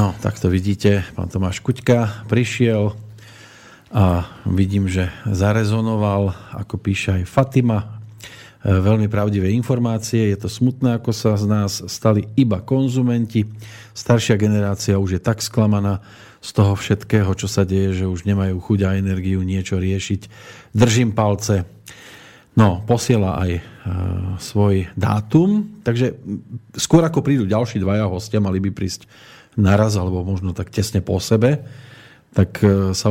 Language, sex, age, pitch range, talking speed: Slovak, male, 40-59, 100-115 Hz, 140 wpm